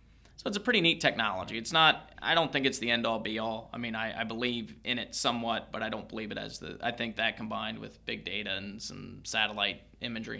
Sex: male